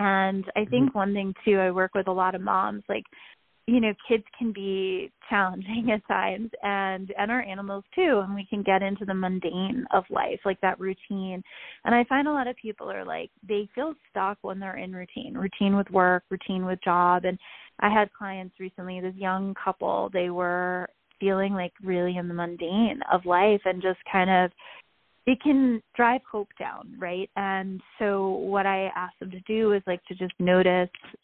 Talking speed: 195 wpm